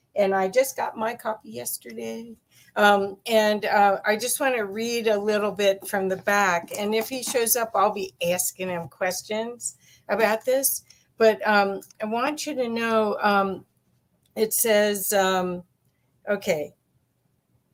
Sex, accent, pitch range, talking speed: female, American, 190-230 Hz, 150 wpm